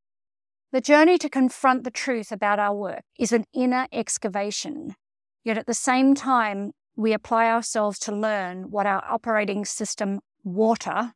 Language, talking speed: English, 150 wpm